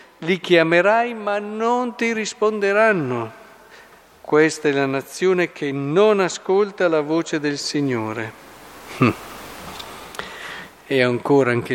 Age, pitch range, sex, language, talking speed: 50-69, 125-170 Hz, male, Italian, 100 wpm